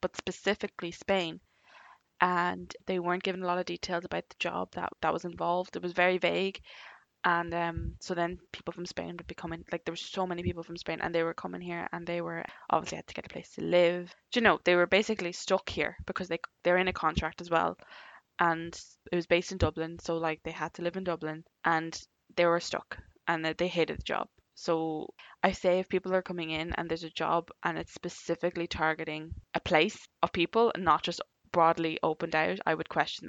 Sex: female